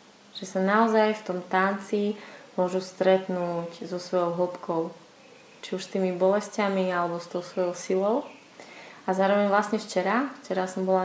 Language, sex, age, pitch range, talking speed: Slovak, female, 20-39, 185-205 Hz, 150 wpm